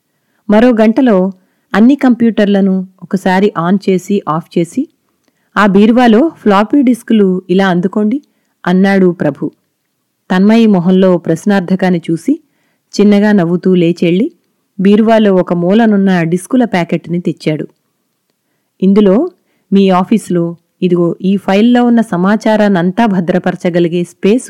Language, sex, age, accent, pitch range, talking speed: Telugu, female, 30-49, native, 175-215 Hz, 100 wpm